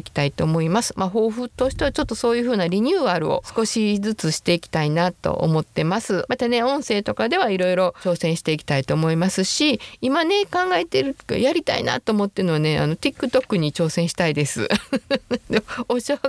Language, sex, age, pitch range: Japanese, female, 50-69, 160-225 Hz